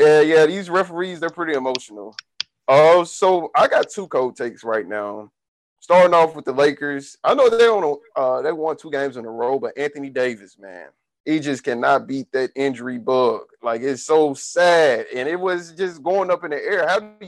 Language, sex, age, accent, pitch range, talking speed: English, male, 30-49, American, 130-195 Hz, 205 wpm